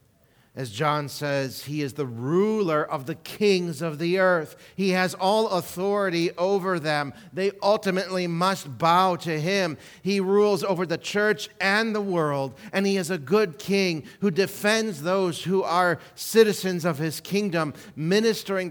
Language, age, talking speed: English, 40-59, 155 wpm